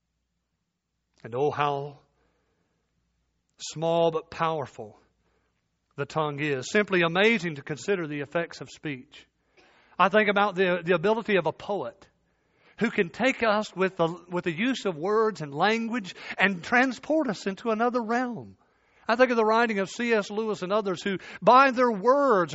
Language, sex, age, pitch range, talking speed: English, male, 50-69, 165-230 Hz, 155 wpm